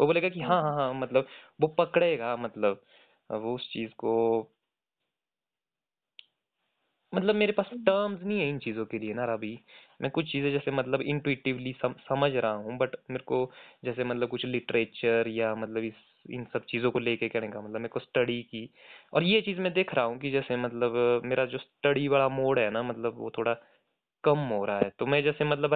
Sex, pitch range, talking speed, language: male, 120-165 Hz, 195 wpm, Hindi